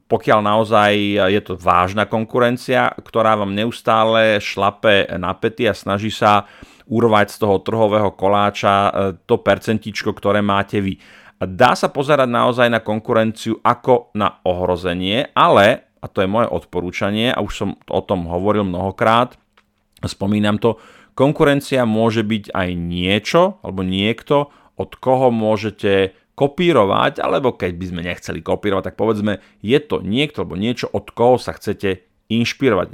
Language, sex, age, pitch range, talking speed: Slovak, male, 30-49, 100-115 Hz, 140 wpm